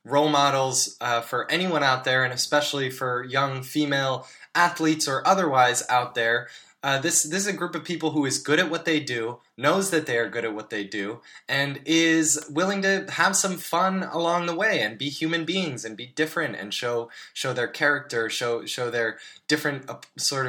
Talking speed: 200 wpm